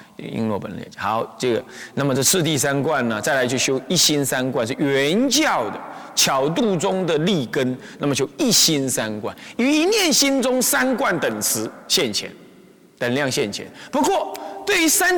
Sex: male